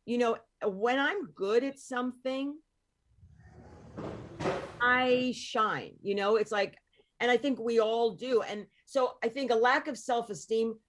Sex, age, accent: female, 40-59, American